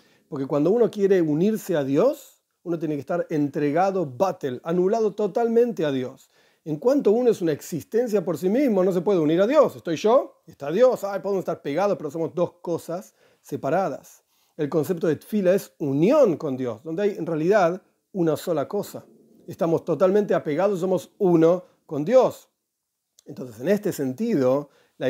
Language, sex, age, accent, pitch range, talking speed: Spanish, male, 40-59, Argentinian, 150-210 Hz, 170 wpm